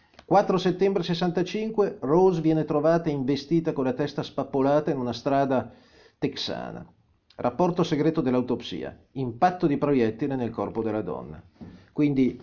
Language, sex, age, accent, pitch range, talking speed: Italian, male, 40-59, native, 120-170 Hz, 125 wpm